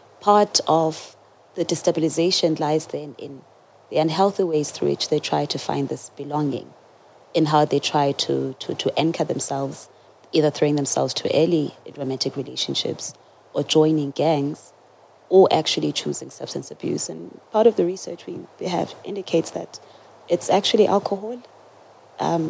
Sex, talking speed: female, 150 wpm